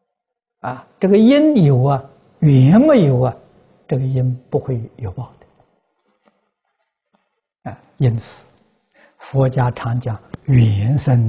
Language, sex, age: Chinese, male, 60-79